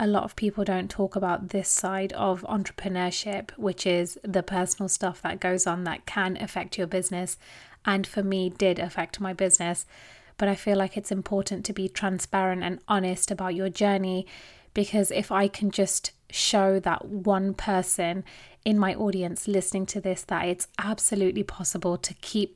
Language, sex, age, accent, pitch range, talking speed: English, female, 20-39, British, 180-200 Hz, 175 wpm